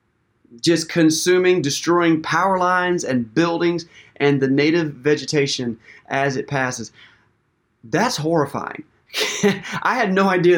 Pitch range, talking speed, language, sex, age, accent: 130-170 Hz, 115 wpm, English, male, 30-49, American